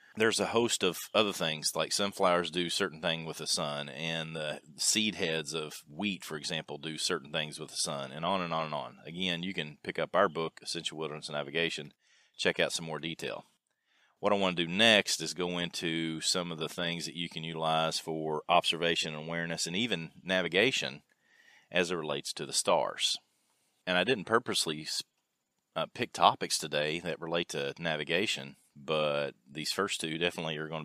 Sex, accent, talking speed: male, American, 195 wpm